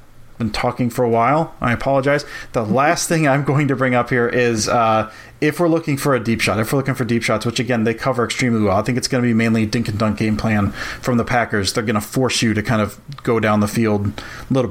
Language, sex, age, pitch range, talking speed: English, male, 30-49, 115-130 Hz, 270 wpm